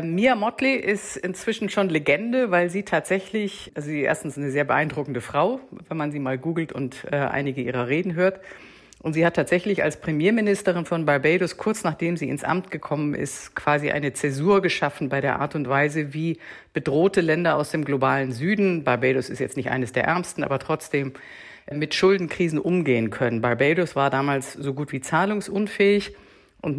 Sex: female